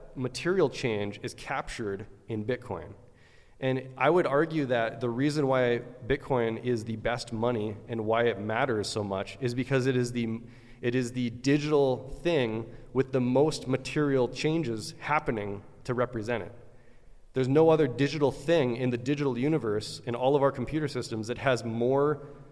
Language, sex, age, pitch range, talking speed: English, male, 30-49, 120-140 Hz, 165 wpm